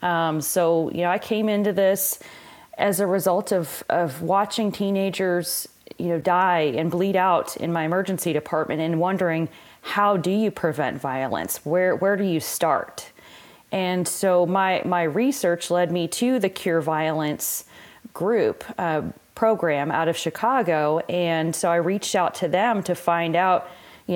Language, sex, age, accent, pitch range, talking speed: English, female, 30-49, American, 160-190 Hz, 160 wpm